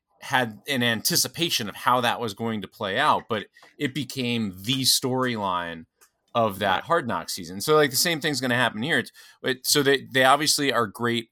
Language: English